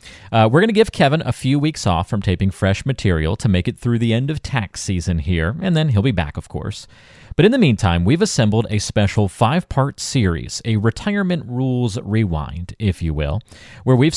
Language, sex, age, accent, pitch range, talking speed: English, male, 40-59, American, 95-130 Hz, 210 wpm